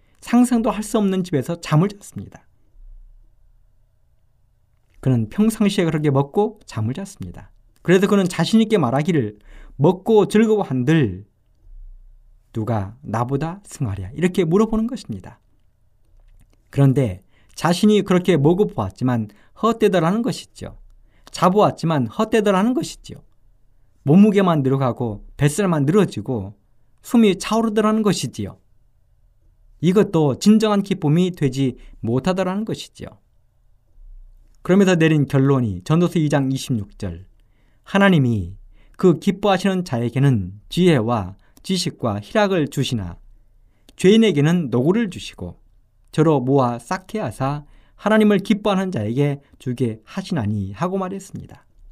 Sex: male